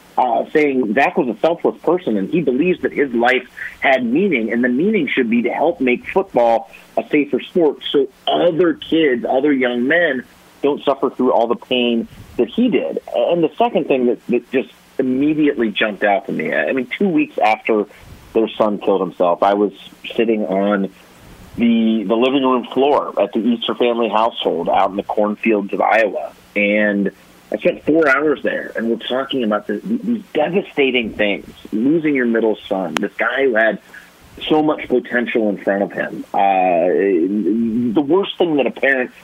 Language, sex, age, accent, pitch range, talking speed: English, male, 30-49, American, 110-145 Hz, 180 wpm